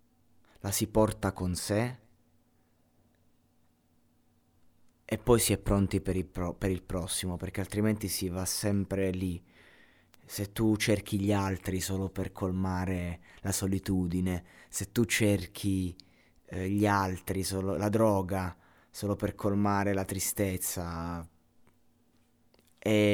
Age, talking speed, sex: 30-49, 115 wpm, male